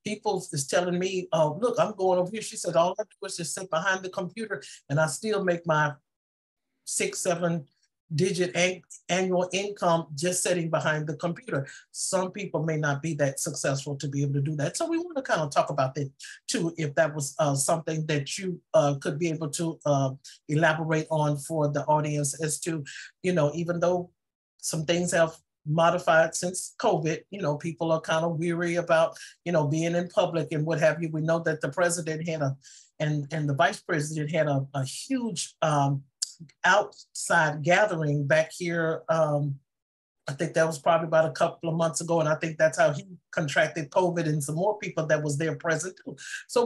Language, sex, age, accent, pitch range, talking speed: English, male, 50-69, American, 155-180 Hz, 205 wpm